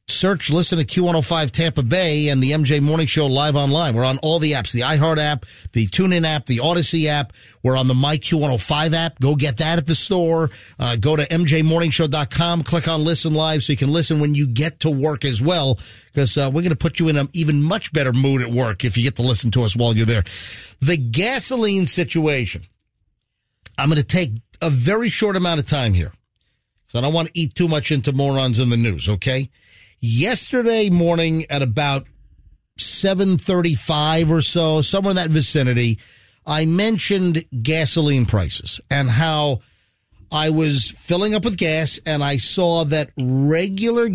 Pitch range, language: 125-165 Hz, English